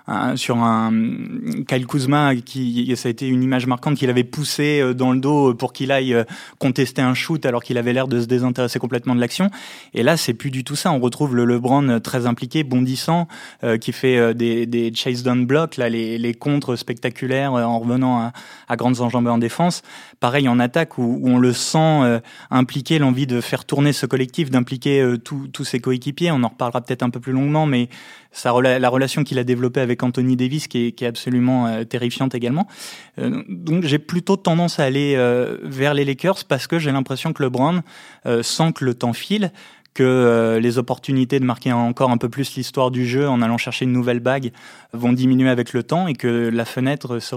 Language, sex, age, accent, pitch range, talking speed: French, male, 20-39, French, 120-140 Hz, 210 wpm